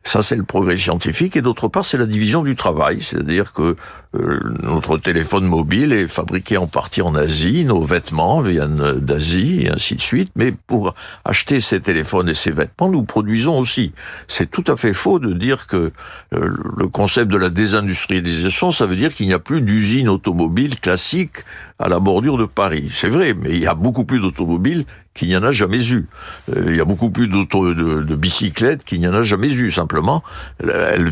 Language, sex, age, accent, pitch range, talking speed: French, male, 60-79, French, 90-130 Hz, 200 wpm